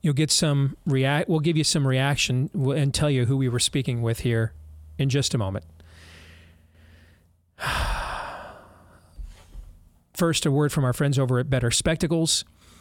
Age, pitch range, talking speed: 40-59, 125-150 Hz, 150 wpm